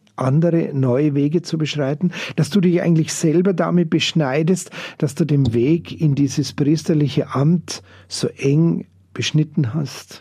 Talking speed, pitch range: 140 wpm, 130-160 Hz